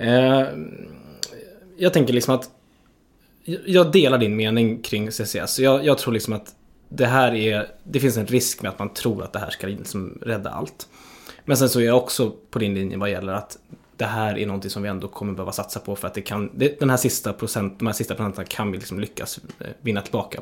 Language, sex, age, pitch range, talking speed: Swedish, male, 20-39, 105-135 Hz, 220 wpm